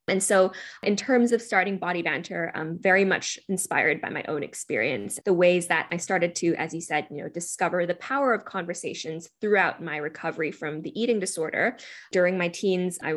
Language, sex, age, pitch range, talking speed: English, female, 10-29, 170-205 Hz, 195 wpm